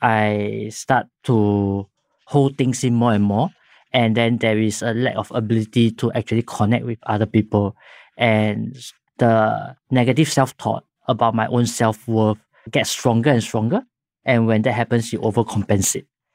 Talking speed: 150 wpm